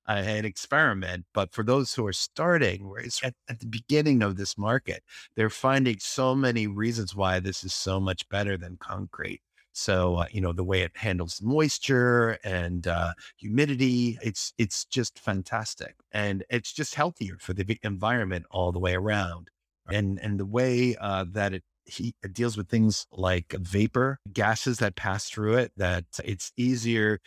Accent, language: American, English